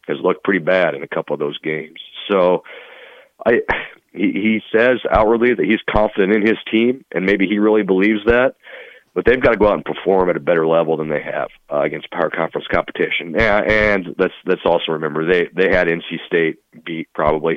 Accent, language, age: American, English, 40-59